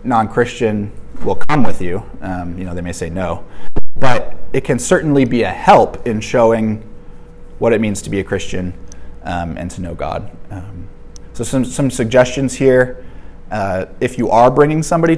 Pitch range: 95-125 Hz